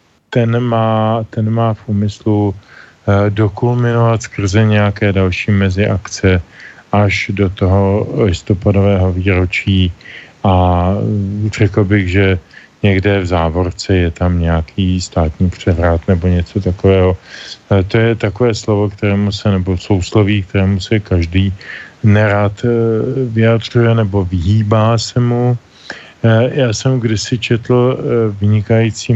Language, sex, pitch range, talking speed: Slovak, male, 100-115 Hz, 110 wpm